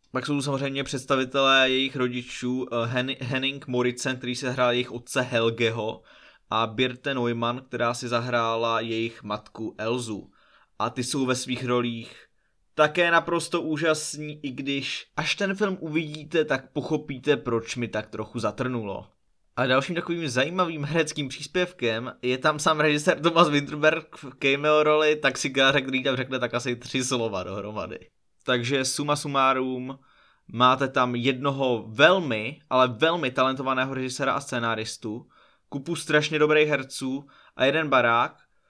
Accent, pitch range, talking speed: native, 120-145 Hz, 140 wpm